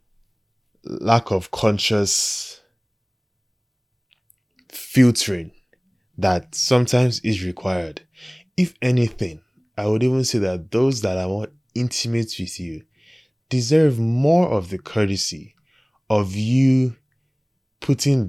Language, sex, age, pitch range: English, male, 20-39, 95-120 Hz